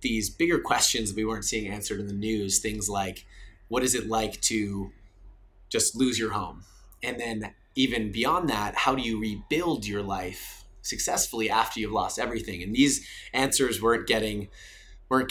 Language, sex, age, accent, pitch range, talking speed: English, male, 20-39, American, 95-115 Hz, 170 wpm